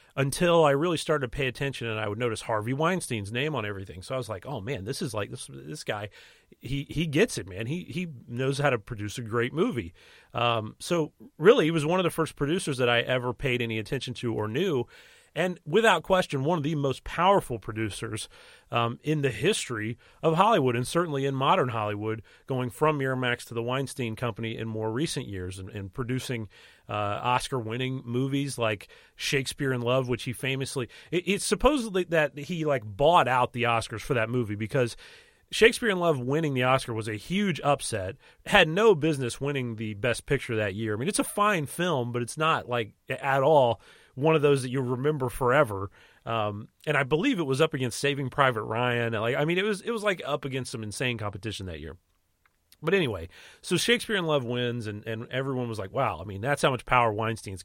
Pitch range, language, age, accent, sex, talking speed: 110-155 Hz, English, 30-49, American, male, 210 wpm